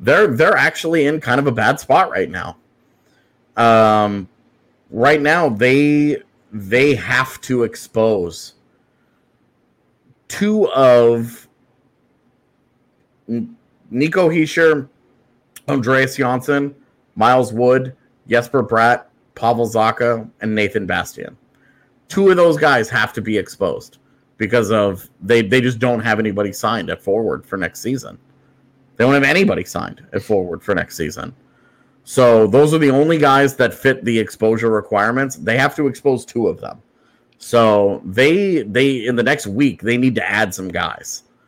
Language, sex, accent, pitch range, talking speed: English, male, American, 105-130 Hz, 140 wpm